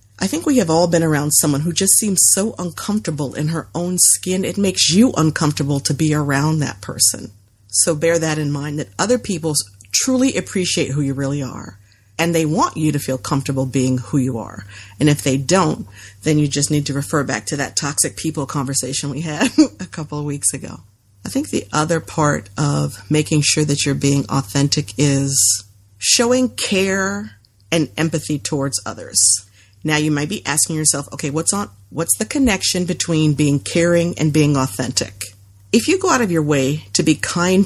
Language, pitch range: English, 130-170 Hz